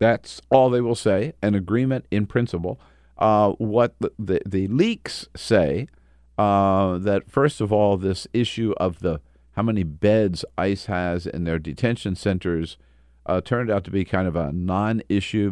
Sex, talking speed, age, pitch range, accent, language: male, 160 wpm, 50-69, 85-110 Hz, American, English